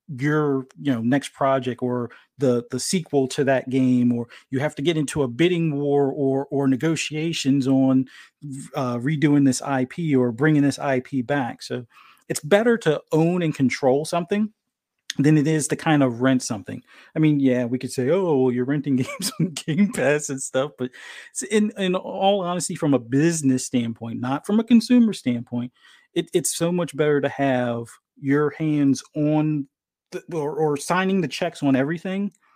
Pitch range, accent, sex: 130-160 Hz, American, male